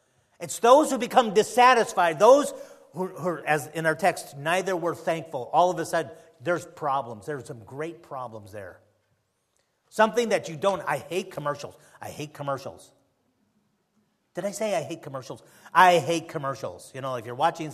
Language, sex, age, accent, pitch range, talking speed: English, male, 40-59, American, 145-195 Hz, 170 wpm